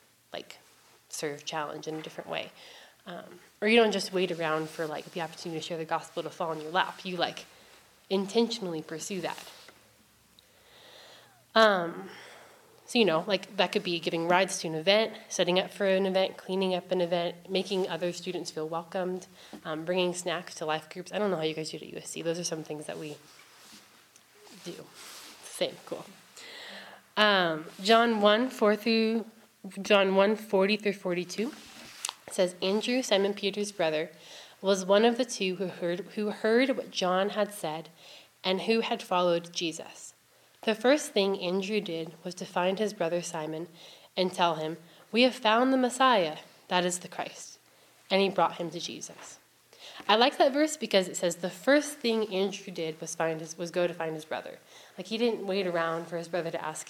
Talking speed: 190 wpm